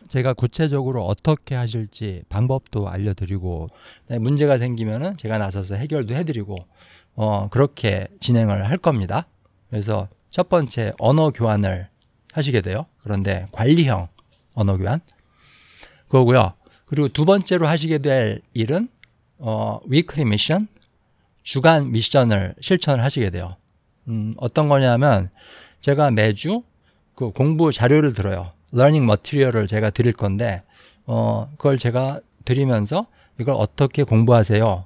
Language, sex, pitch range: Korean, male, 105-140 Hz